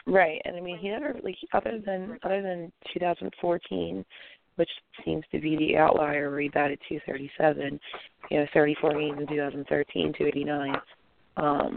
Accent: American